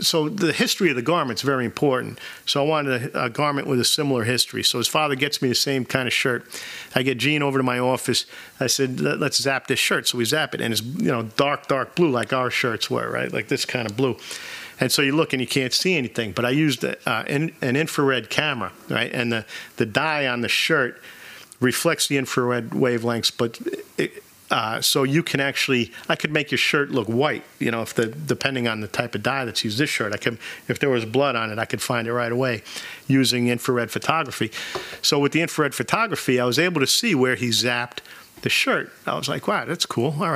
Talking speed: 240 wpm